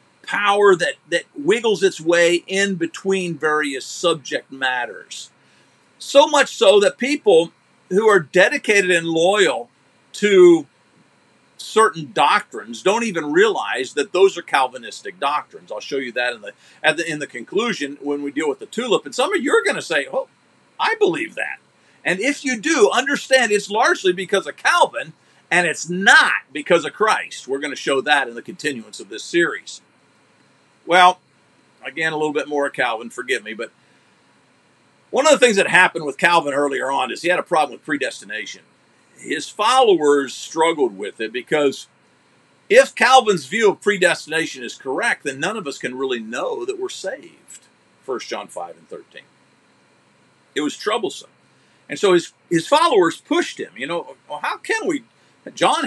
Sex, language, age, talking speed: male, English, 50-69, 170 wpm